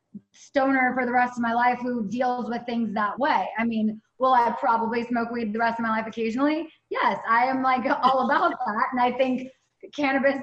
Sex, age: female, 20-39